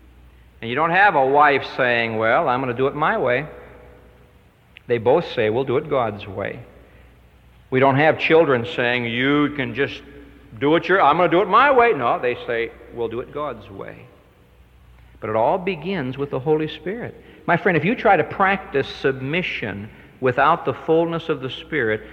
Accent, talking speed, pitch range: American, 195 wpm, 100-150 Hz